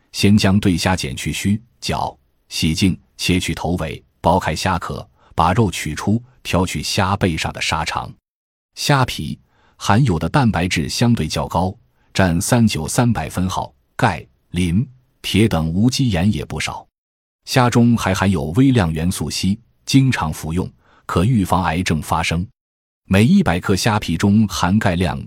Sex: male